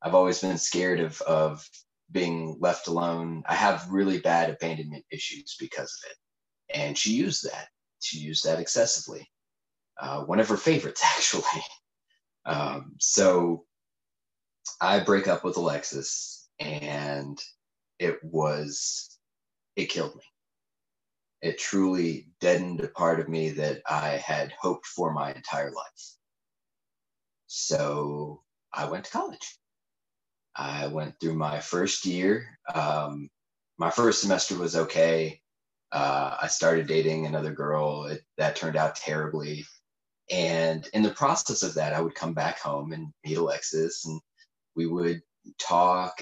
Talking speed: 135 wpm